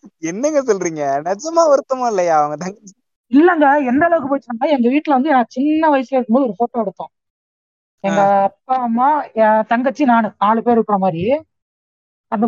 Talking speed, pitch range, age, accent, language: 155 wpm, 205-270 Hz, 20-39, native, Tamil